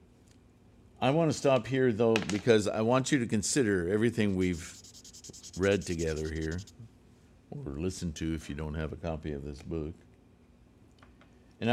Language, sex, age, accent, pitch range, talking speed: English, male, 50-69, American, 85-115 Hz, 155 wpm